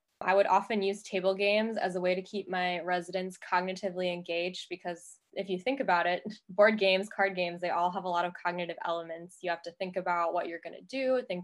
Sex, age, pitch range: female, 10-29, 180-205 Hz